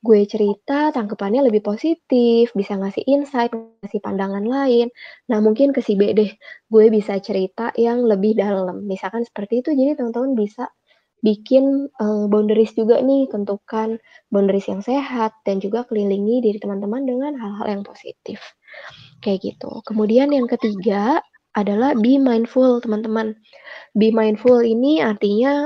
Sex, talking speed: female, 140 wpm